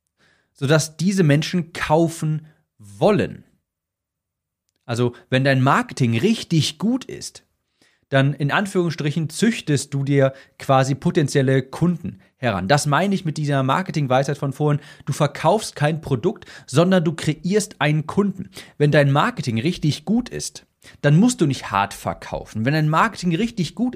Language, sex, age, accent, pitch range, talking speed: German, male, 40-59, German, 130-175 Hz, 140 wpm